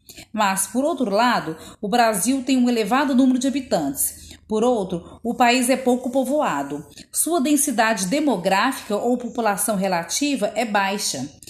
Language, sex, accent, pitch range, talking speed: Portuguese, female, Brazilian, 220-275 Hz, 140 wpm